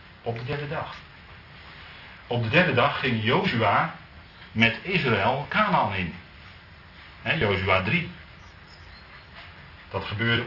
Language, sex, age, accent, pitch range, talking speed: Dutch, male, 40-59, Dutch, 95-125 Hz, 105 wpm